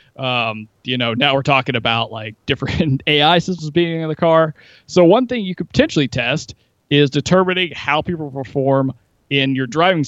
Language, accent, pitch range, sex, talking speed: English, American, 130-160 Hz, male, 180 wpm